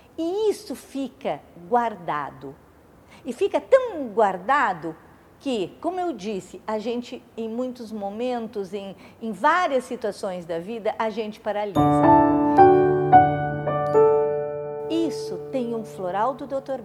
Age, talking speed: 50-69, 115 wpm